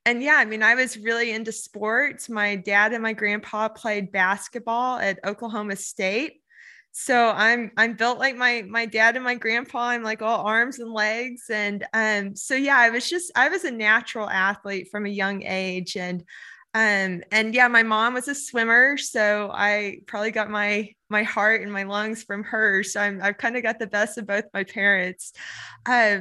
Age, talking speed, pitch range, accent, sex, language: 20-39, 195 wpm, 200-235 Hz, American, female, English